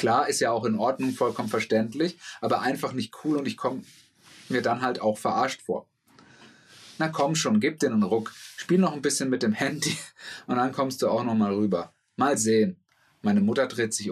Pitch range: 110-135 Hz